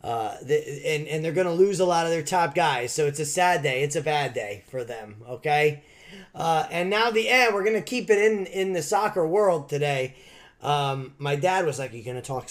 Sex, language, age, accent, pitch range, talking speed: male, English, 30-49, American, 120-170 Hz, 255 wpm